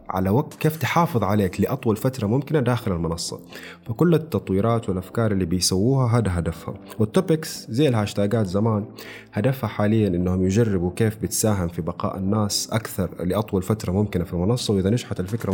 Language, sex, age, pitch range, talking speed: Arabic, male, 30-49, 95-135 Hz, 150 wpm